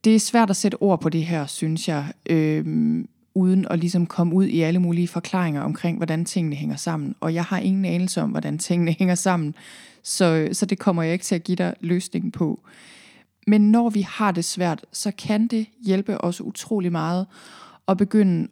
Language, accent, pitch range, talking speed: Danish, native, 170-205 Hz, 200 wpm